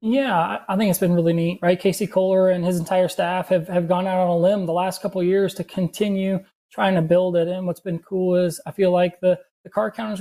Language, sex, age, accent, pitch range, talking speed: English, male, 20-39, American, 175-195 Hz, 255 wpm